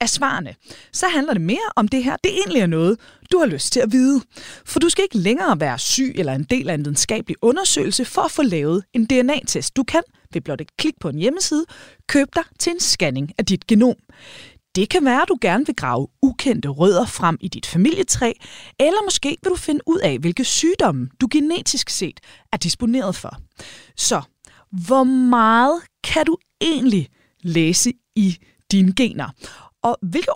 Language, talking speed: Danish, 190 wpm